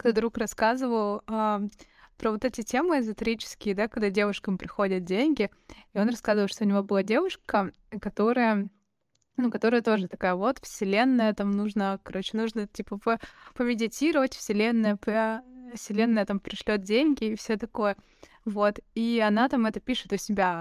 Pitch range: 205-240 Hz